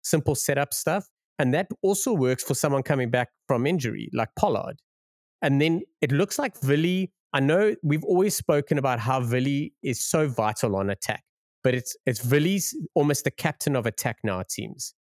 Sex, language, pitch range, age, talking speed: male, English, 115-150 Hz, 30-49, 185 wpm